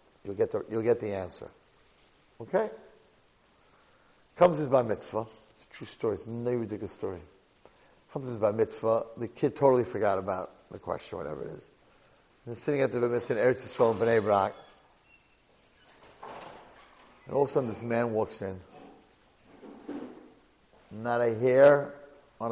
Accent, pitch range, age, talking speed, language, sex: American, 110-130 Hz, 50-69, 160 wpm, English, male